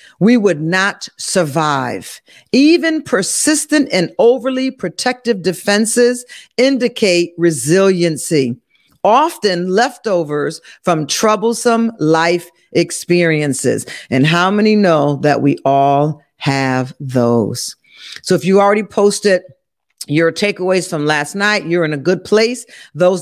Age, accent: 50-69, American